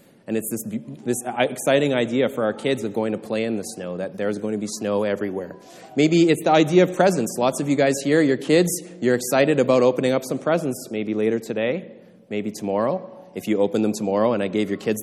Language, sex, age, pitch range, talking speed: English, male, 20-39, 110-150 Hz, 230 wpm